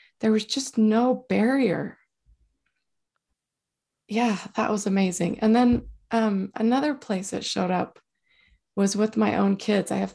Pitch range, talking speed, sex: 195-245 Hz, 140 wpm, female